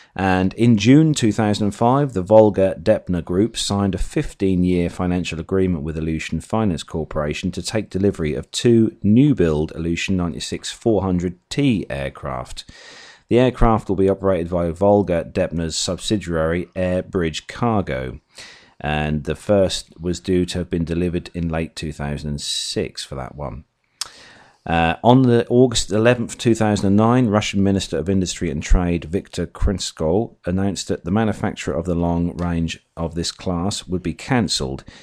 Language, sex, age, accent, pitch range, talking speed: English, male, 40-59, British, 80-100 Hz, 135 wpm